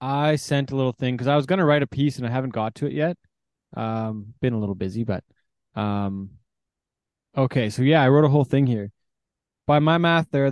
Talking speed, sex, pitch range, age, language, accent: 235 wpm, male, 120-140 Hz, 20-39, English, American